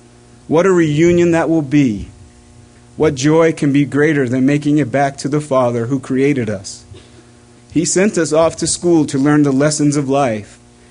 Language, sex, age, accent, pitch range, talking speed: English, male, 40-59, American, 120-160 Hz, 180 wpm